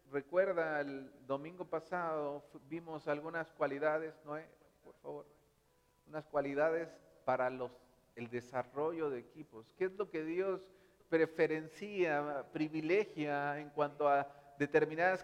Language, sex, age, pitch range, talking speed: Spanish, male, 40-59, 150-195 Hz, 120 wpm